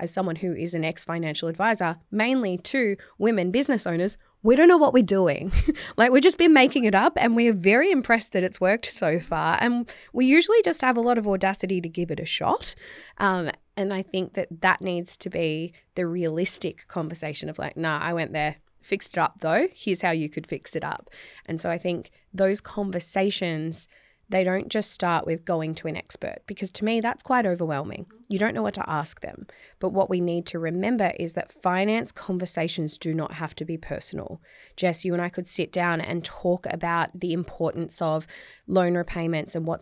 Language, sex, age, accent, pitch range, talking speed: English, female, 20-39, Australian, 165-200 Hz, 210 wpm